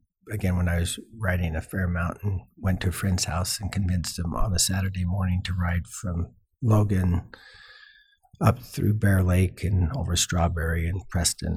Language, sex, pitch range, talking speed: English, male, 85-105 Hz, 170 wpm